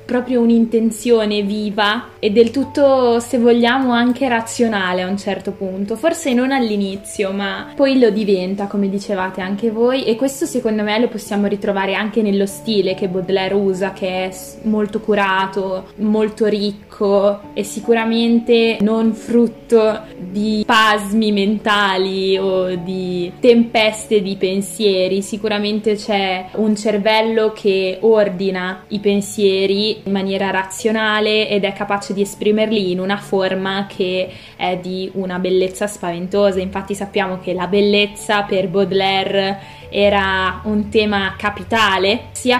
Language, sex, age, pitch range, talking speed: Italian, female, 20-39, 195-220 Hz, 130 wpm